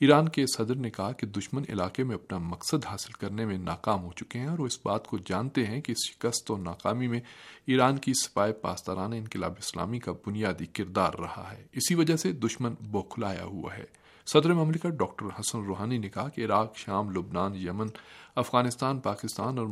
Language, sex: Urdu, male